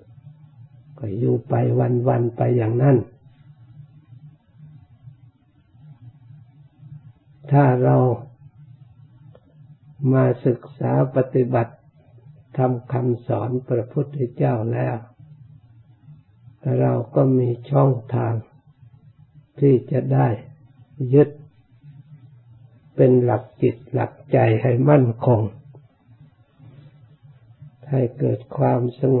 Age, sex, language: 60-79, male, Thai